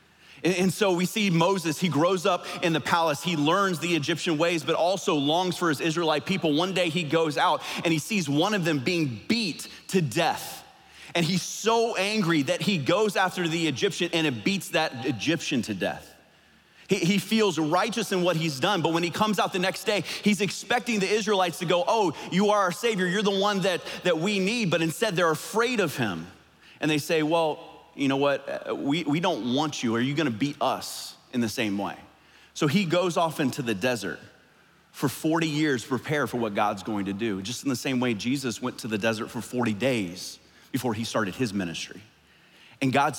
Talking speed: 215 wpm